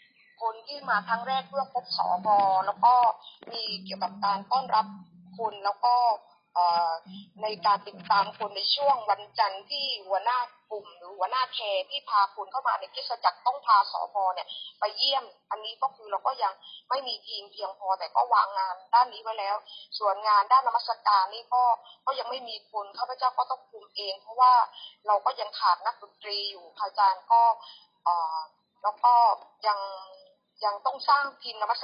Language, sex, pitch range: Thai, female, 200-250 Hz